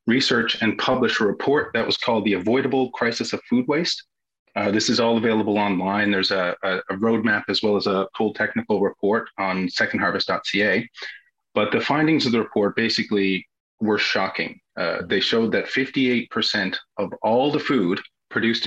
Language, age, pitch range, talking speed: English, 30-49, 100-115 Hz, 170 wpm